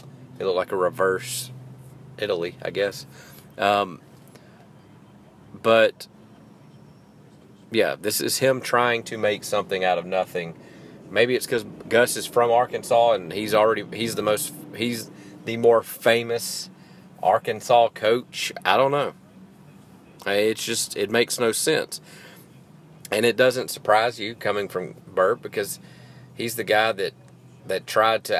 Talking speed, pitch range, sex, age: 135 wpm, 105-125 Hz, male, 30-49